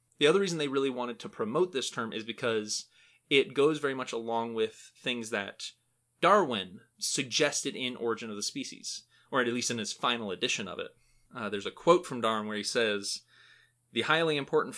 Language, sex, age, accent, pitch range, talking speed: English, male, 30-49, American, 110-135 Hz, 195 wpm